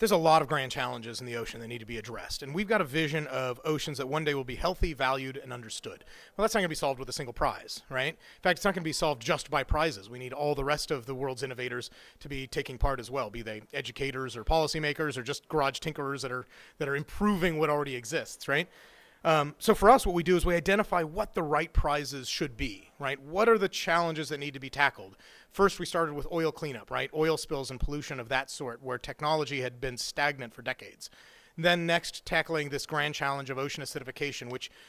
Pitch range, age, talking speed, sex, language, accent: 135-165 Hz, 30-49, 245 wpm, male, English, American